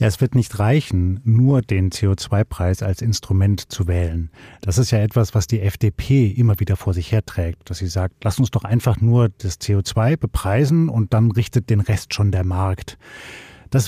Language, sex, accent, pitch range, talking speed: German, male, German, 105-130 Hz, 190 wpm